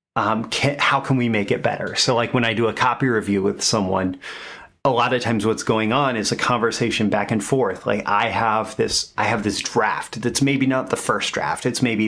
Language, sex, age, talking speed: English, male, 30-49, 230 wpm